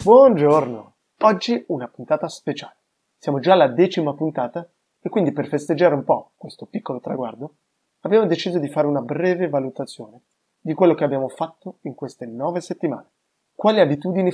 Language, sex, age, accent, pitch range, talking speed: Italian, male, 20-39, native, 140-175 Hz, 155 wpm